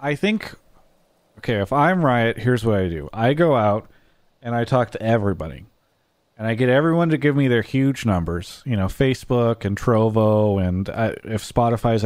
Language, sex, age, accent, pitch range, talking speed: English, male, 30-49, American, 105-125 Hz, 185 wpm